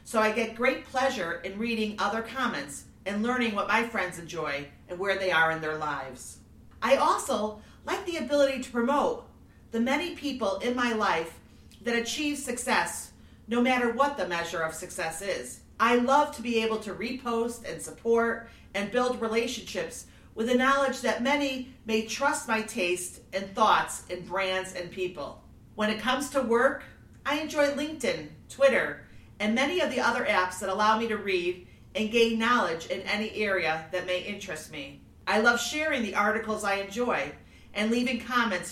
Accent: American